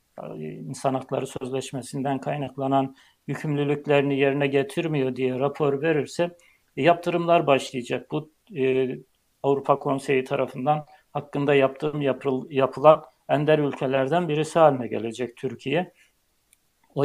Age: 60-79